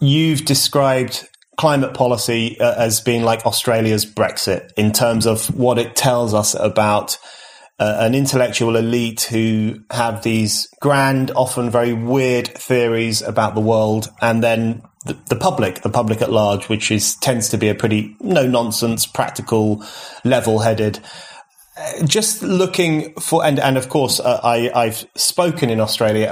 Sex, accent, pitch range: male, British, 110-125 Hz